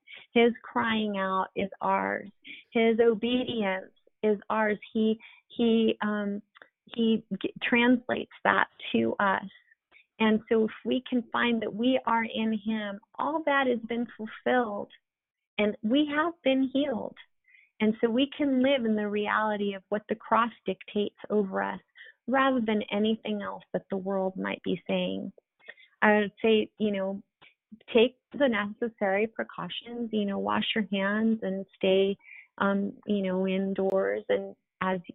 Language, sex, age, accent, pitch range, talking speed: English, female, 30-49, American, 190-235 Hz, 145 wpm